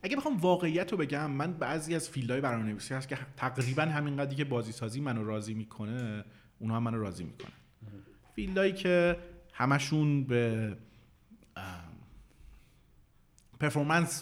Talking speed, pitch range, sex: 125 wpm, 105-140 Hz, male